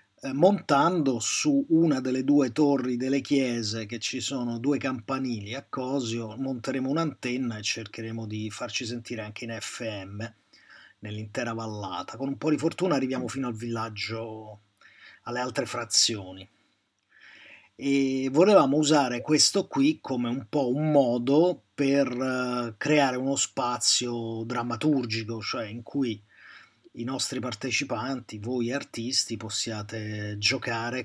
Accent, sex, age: native, male, 30-49